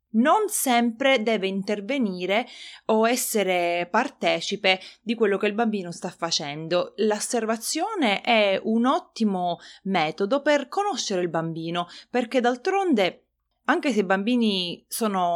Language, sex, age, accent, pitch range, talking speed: Italian, female, 30-49, native, 175-240 Hz, 115 wpm